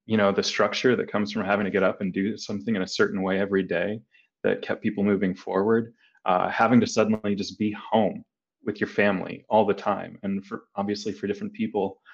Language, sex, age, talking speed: English, male, 20-39, 215 wpm